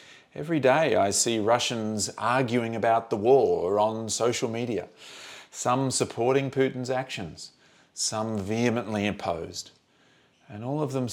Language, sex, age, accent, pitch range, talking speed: English, male, 40-59, Australian, 105-140 Hz, 125 wpm